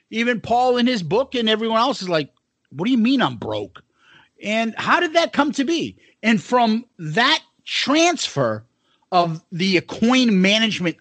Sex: male